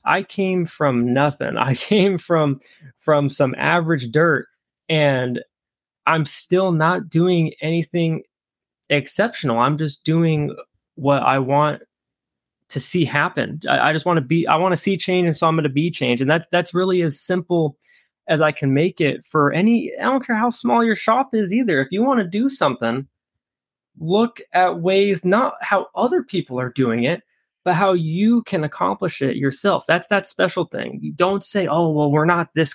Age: 20-39